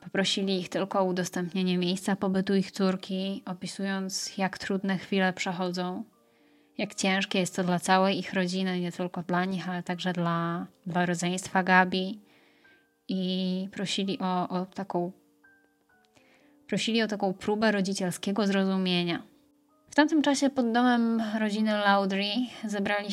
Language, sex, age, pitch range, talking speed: Polish, female, 20-39, 185-215 Hz, 130 wpm